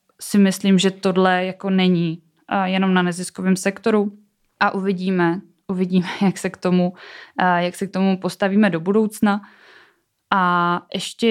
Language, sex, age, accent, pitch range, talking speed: Czech, female, 20-39, native, 190-215 Hz, 150 wpm